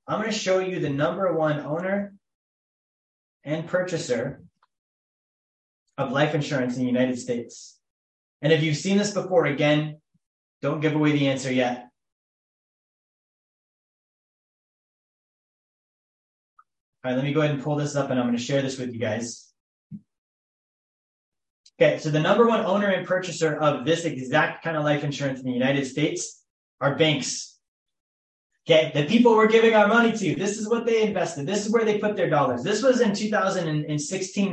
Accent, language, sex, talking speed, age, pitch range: American, English, male, 165 wpm, 20-39, 140-185 Hz